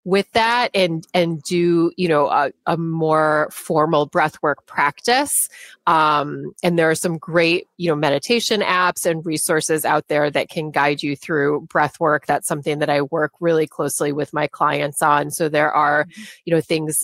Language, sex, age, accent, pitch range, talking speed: English, female, 30-49, American, 150-175 Hz, 185 wpm